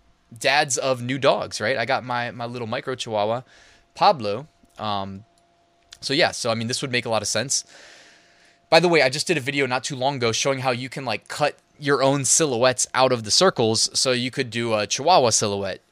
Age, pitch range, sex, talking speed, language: 20-39, 110-135 Hz, male, 220 wpm, English